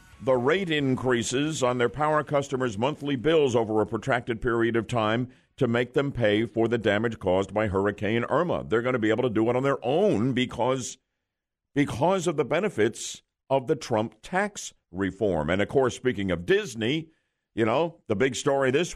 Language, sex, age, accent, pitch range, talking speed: English, male, 50-69, American, 115-160 Hz, 185 wpm